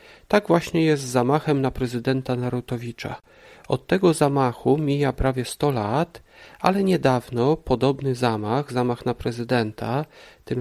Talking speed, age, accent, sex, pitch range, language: 130 wpm, 40-59, native, male, 125-160 Hz, Polish